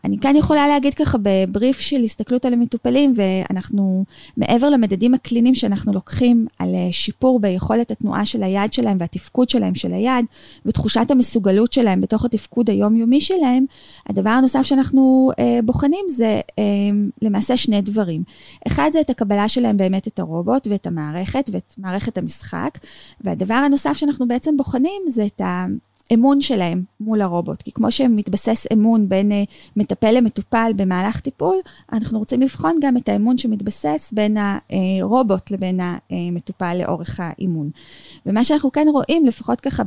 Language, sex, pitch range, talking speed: Hebrew, female, 195-255 Hz, 145 wpm